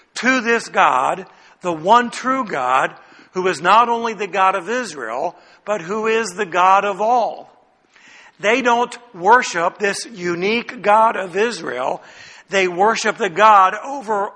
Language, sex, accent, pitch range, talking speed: English, male, American, 200-240 Hz, 145 wpm